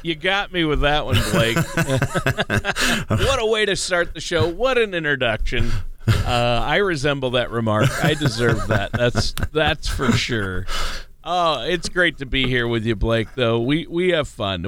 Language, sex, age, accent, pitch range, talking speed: English, male, 40-59, American, 115-145 Hz, 175 wpm